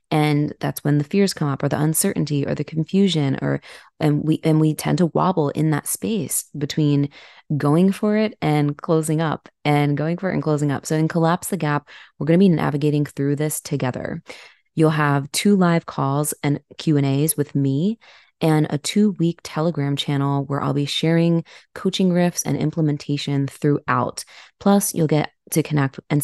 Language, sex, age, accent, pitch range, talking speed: English, female, 20-39, American, 145-175 Hz, 190 wpm